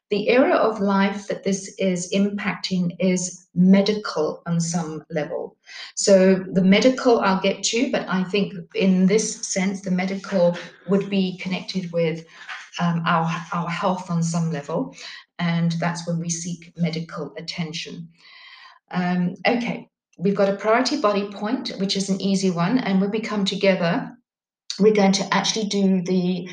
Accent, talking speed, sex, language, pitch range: British, 155 wpm, female, English, 180-210 Hz